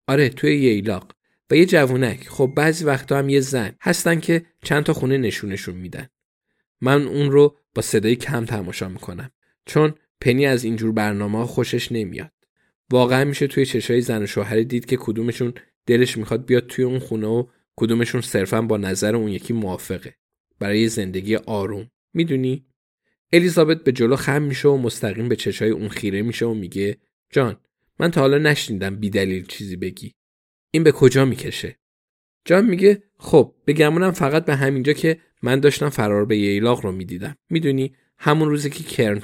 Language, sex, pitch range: Persian, male, 110-140 Hz